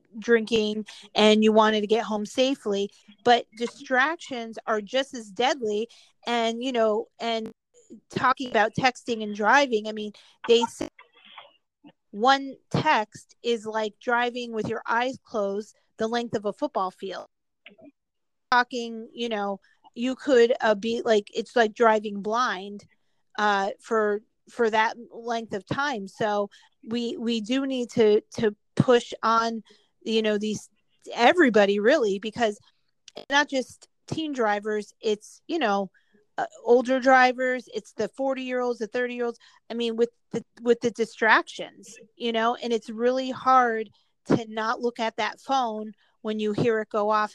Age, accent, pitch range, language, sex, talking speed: 40-59, American, 215-245 Hz, English, female, 150 wpm